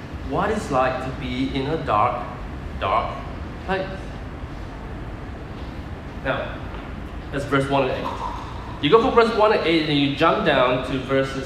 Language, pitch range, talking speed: English, 125-160 Hz, 155 wpm